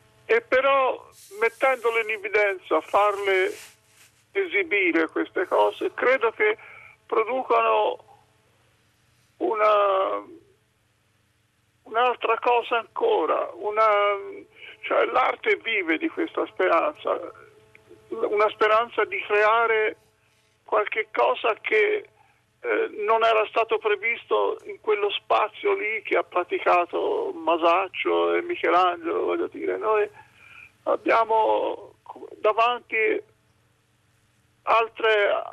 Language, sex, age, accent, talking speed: Italian, male, 50-69, native, 85 wpm